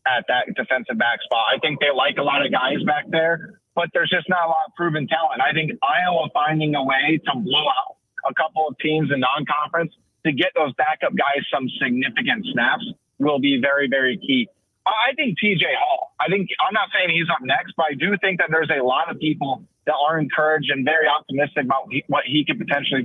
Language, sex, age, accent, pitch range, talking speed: English, male, 30-49, American, 145-180 Hz, 225 wpm